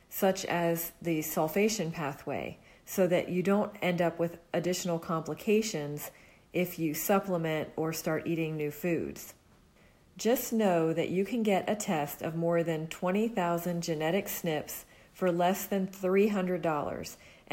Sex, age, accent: female, 40-59, American